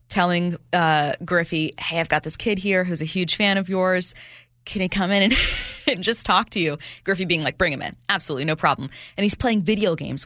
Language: English